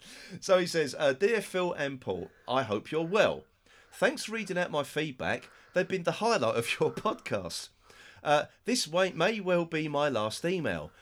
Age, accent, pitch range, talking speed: 40-59, British, 125-180 Hz, 185 wpm